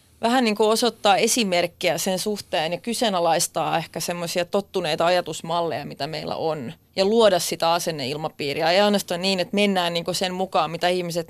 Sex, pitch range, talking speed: female, 170-205 Hz, 165 wpm